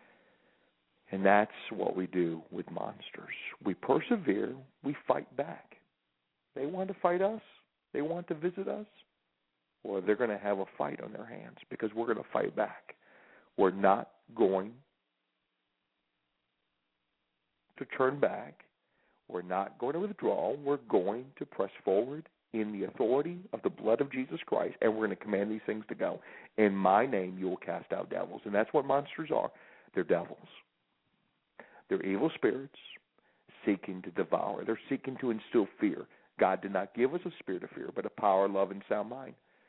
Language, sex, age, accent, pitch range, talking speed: English, male, 40-59, American, 95-155 Hz, 170 wpm